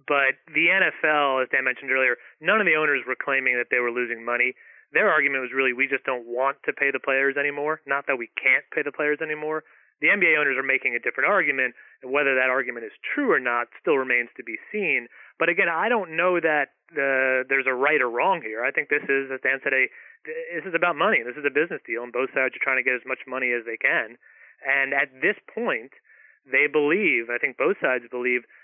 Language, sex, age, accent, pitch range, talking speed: English, male, 30-49, American, 130-150 Hz, 235 wpm